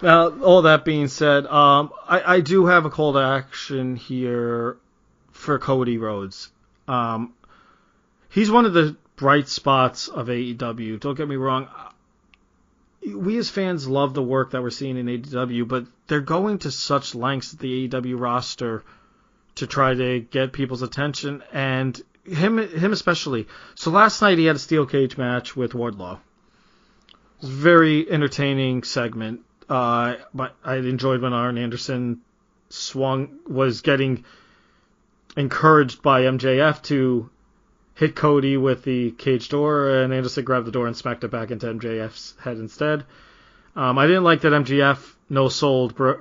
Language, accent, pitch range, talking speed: English, American, 125-150 Hz, 150 wpm